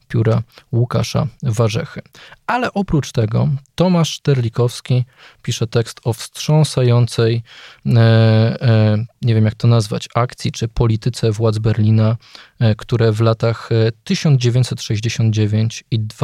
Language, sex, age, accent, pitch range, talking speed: Polish, male, 20-39, native, 115-140 Hz, 105 wpm